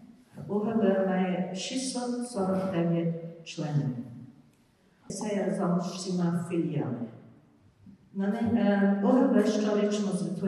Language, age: Ukrainian, 50-69